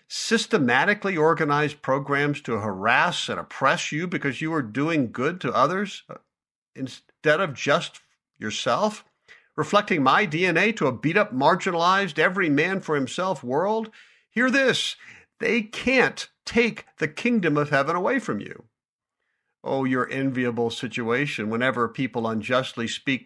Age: 50-69